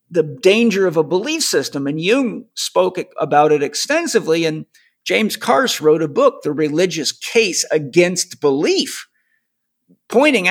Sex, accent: male, American